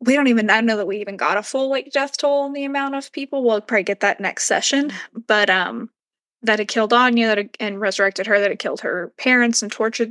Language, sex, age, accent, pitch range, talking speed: English, female, 20-39, American, 200-235 Hz, 260 wpm